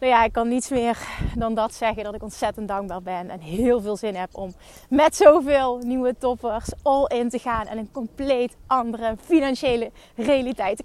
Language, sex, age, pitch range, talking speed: Dutch, female, 30-49, 235-310 Hz, 190 wpm